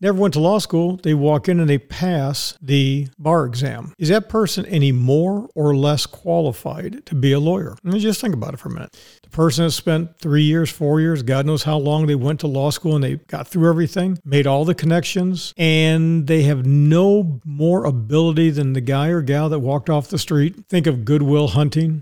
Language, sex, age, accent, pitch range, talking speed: English, male, 50-69, American, 145-170 Hz, 220 wpm